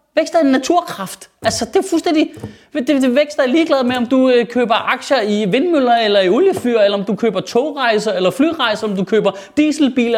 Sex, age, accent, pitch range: male, 30-49, native, 195-290 Hz